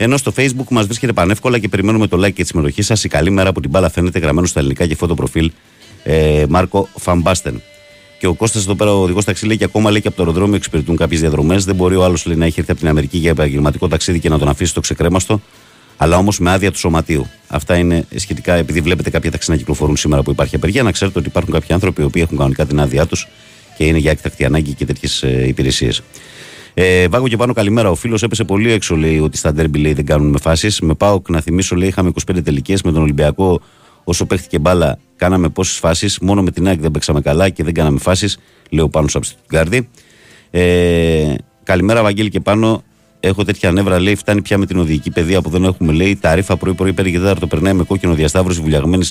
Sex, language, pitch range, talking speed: male, Greek, 80-100 Hz, 185 wpm